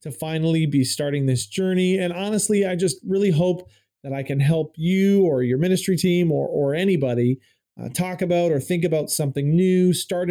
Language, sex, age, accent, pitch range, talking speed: English, male, 40-59, American, 140-180 Hz, 190 wpm